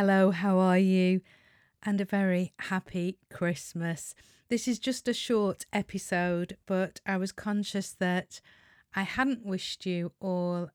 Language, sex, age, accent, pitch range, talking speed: English, female, 40-59, British, 175-210 Hz, 140 wpm